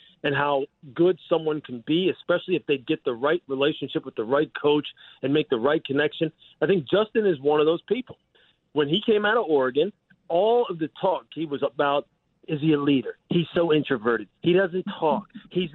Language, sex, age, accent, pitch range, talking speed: English, male, 40-59, American, 155-200 Hz, 205 wpm